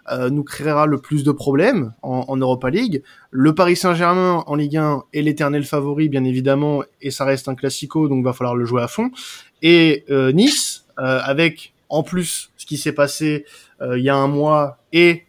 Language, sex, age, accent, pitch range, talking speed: French, male, 20-39, French, 130-170 Hz, 210 wpm